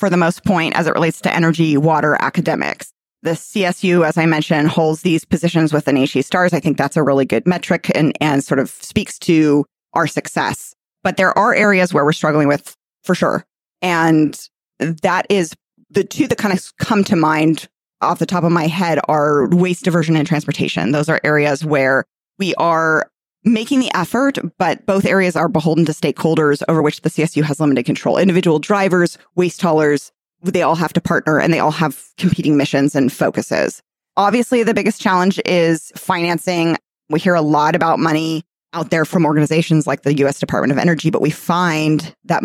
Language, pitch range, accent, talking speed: English, 150-180 Hz, American, 190 wpm